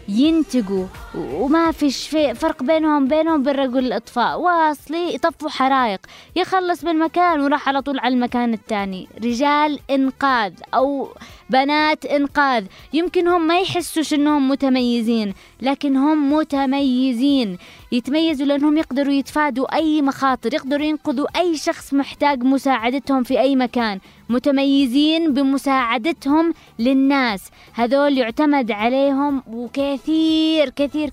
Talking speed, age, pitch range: 105 wpm, 20-39, 250-300 Hz